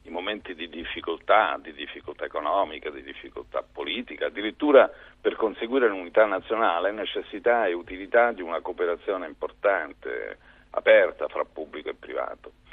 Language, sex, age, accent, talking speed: Italian, male, 50-69, native, 125 wpm